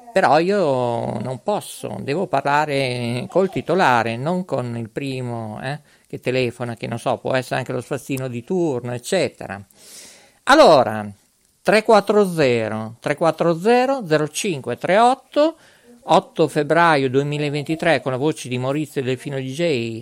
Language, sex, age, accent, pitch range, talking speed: Italian, male, 50-69, native, 130-190 Hz, 125 wpm